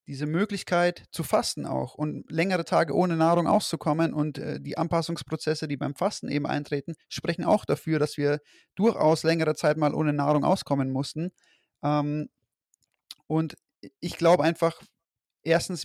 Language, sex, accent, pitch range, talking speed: German, male, German, 145-170 Hz, 150 wpm